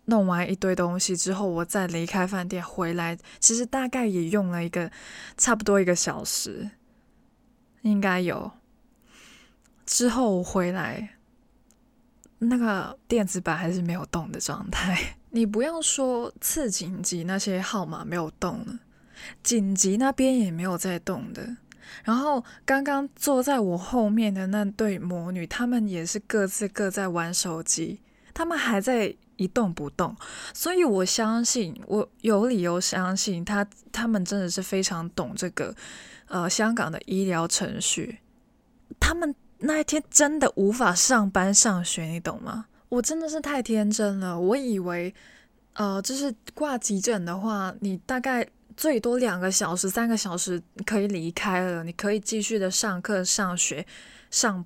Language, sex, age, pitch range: Chinese, female, 20-39, 185-240 Hz